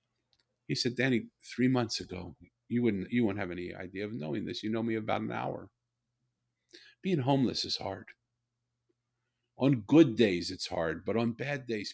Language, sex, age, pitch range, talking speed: English, male, 50-69, 105-125 Hz, 170 wpm